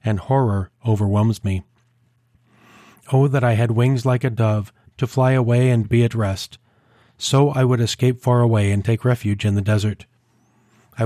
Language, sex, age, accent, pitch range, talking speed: English, male, 40-59, American, 110-125 Hz, 175 wpm